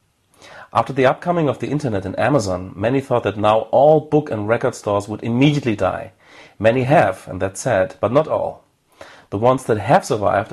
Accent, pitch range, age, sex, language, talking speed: German, 100-130 Hz, 40-59, male, English, 190 wpm